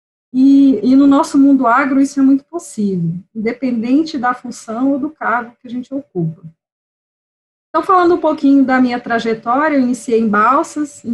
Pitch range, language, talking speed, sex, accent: 215-265 Hz, Portuguese, 170 wpm, female, Brazilian